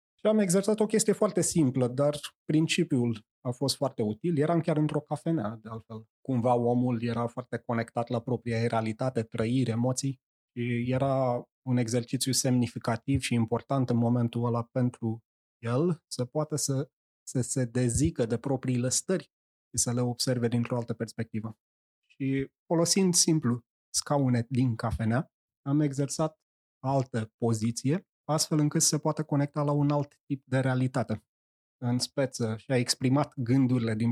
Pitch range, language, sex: 115-145 Hz, Romanian, male